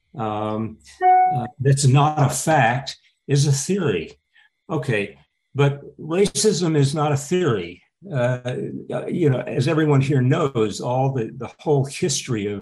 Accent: American